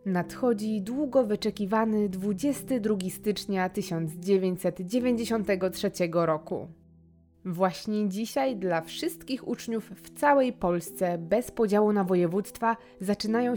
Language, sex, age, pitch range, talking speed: Polish, female, 20-39, 185-230 Hz, 90 wpm